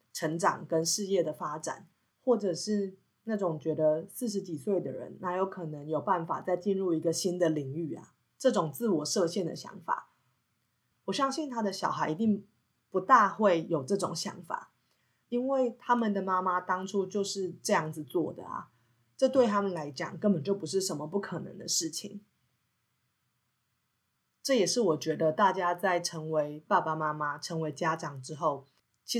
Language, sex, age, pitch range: Chinese, female, 30-49, 155-195 Hz